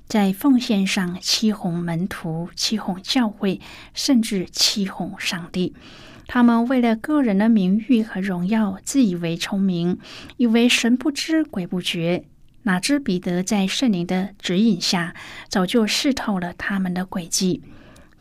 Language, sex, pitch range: Chinese, female, 180-230 Hz